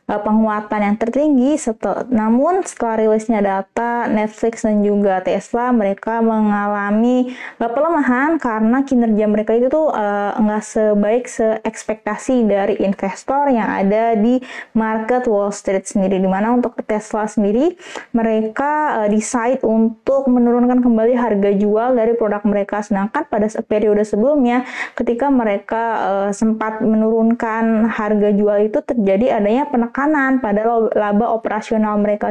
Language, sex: Indonesian, female